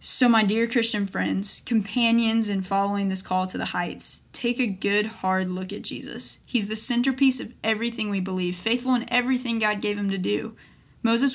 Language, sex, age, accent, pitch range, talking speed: English, female, 10-29, American, 195-235 Hz, 190 wpm